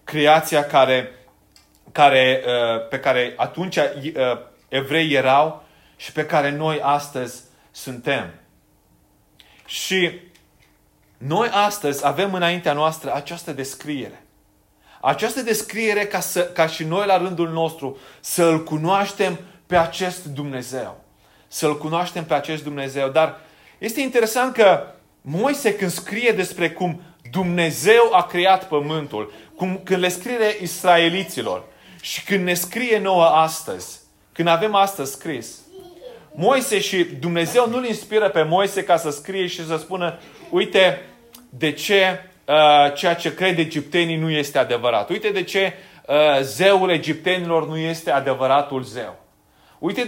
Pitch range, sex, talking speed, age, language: 150-190 Hz, male, 130 wpm, 30-49, Romanian